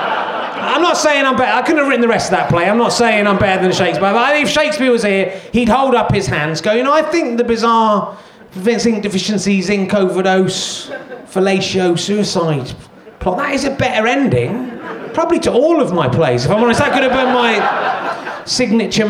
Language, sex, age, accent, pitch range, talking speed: English, male, 30-49, British, 225-290 Hz, 210 wpm